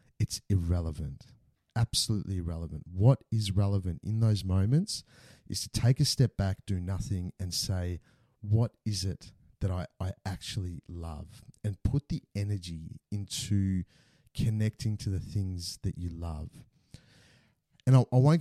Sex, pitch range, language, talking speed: male, 100-130 Hz, English, 145 wpm